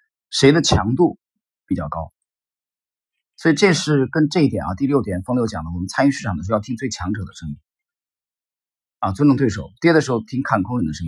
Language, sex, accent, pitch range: Chinese, male, native, 95-150 Hz